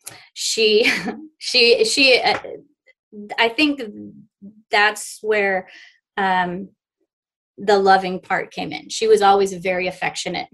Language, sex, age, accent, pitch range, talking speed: English, female, 20-39, American, 175-220 Hz, 115 wpm